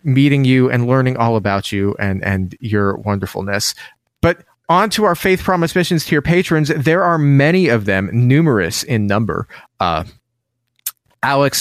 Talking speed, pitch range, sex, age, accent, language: 160 wpm, 120-175 Hz, male, 30-49, American, English